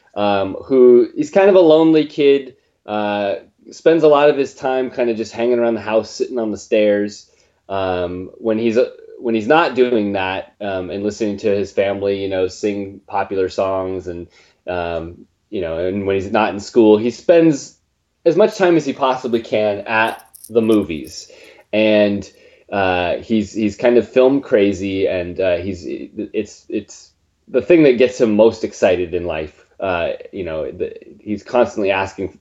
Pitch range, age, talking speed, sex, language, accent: 95-135 Hz, 20-39, 180 wpm, male, English, American